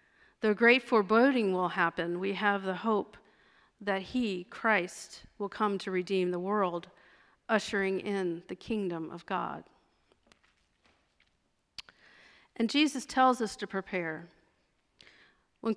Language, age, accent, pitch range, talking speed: English, 50-69, American, 185-220 Hz, 120 wpm